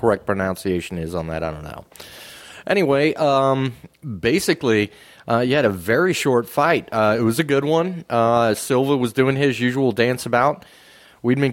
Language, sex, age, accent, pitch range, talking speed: English, male, 30-49, American, 110-140 Hz, 170 wpm